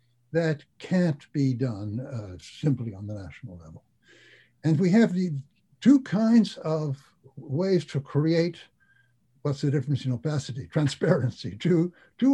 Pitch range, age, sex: 120-160 Hz, 60-79, male